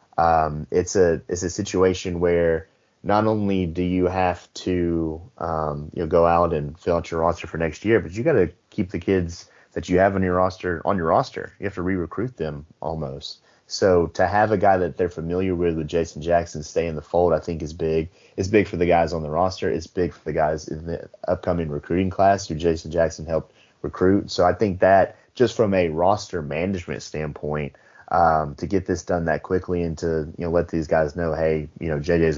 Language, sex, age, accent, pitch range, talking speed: English, male, 30-49, American, 80-90 Hz, 220 wpm